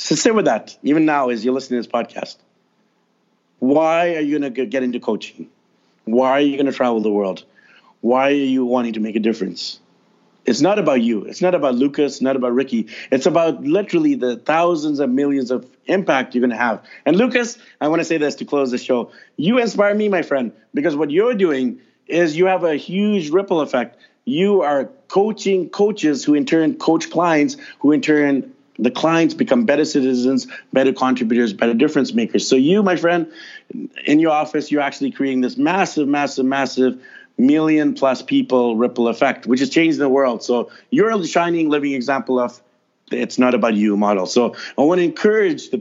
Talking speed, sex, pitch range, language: 195 wpm, male, 125-170 Hz, English